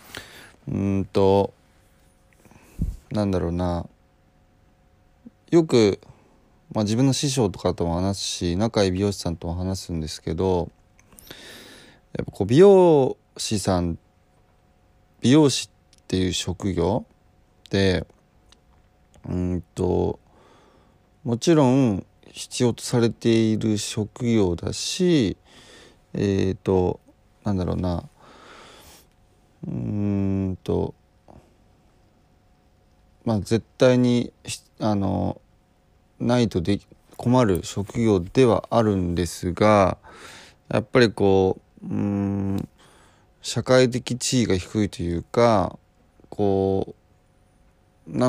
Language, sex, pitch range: Japanese, male, 90-115 Hz